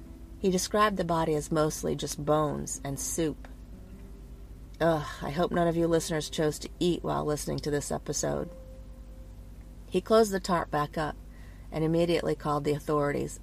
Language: English